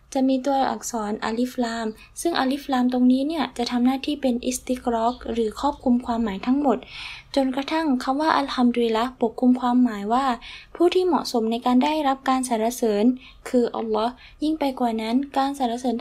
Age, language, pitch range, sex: 10-29, Thai, 235-270 Hz, female